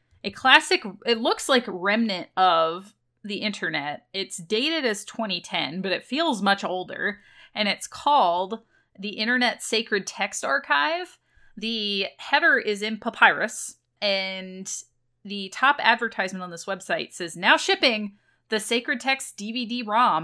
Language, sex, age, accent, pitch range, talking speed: English, female, 30-49, American, 185-245 Hz, 135 wpm